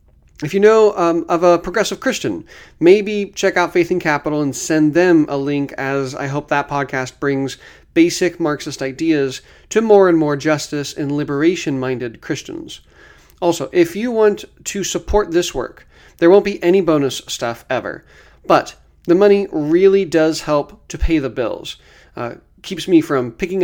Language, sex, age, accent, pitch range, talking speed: English, male, 40-59, American, 145-180 Hz, 165 wpm